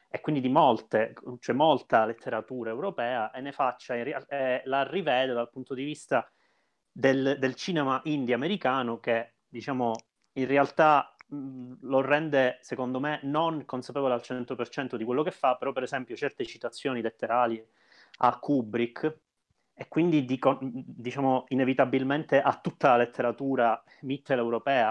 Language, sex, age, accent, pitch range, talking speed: Italian, male, 30-49, native, 115-135 Hz, 145 wpm